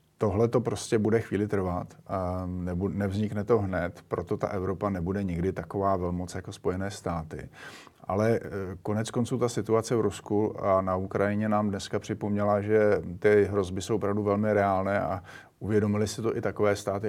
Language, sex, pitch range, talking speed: Slovak, male, 95-115 Hz, 170 wpm